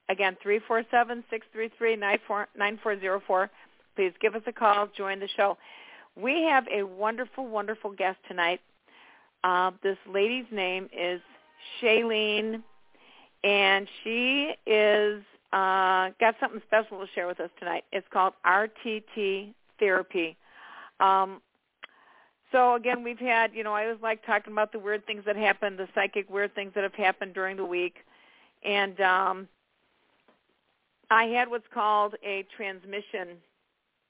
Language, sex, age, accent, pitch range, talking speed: English, female, 50-69, American, 190-220 Hz, 155 wpm